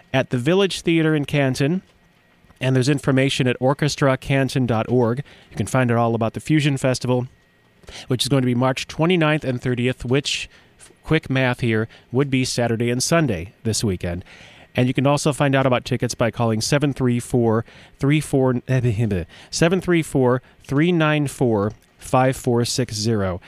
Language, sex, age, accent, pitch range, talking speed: English, male, 30-49, American, 120-150 Hz, 135 wpm